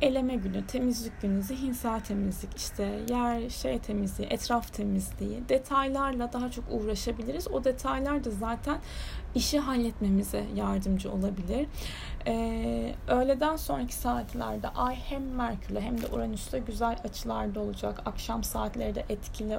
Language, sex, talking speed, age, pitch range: Turkish, female, 125 wpm, 10-29, 205-245 Hz